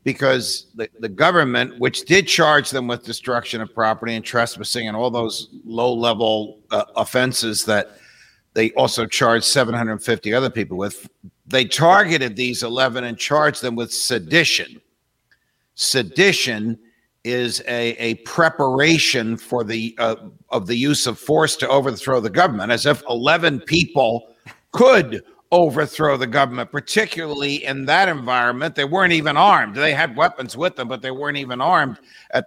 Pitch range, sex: 120-150 Hz, male